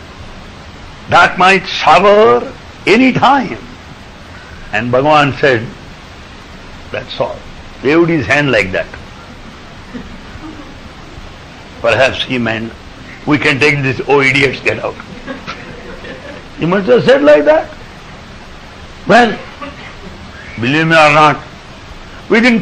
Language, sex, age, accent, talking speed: English, male, 60-79, Indian, 100 wpm